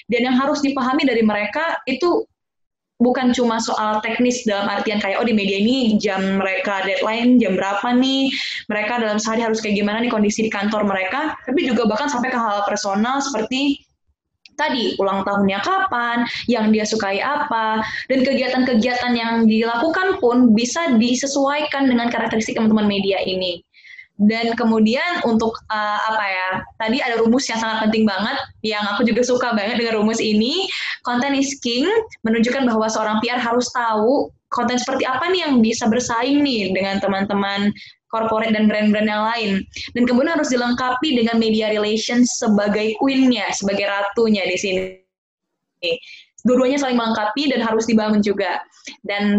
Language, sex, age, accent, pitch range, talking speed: Indonesian, female, 10-29, native, 210-255 Hz, 155 wpm